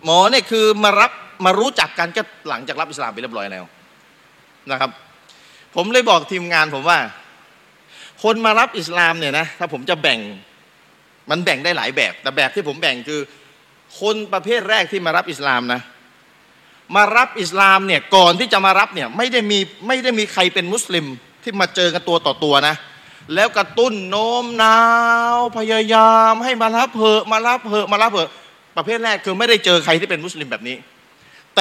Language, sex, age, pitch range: Thai, male, 30-49, 165-220 Hz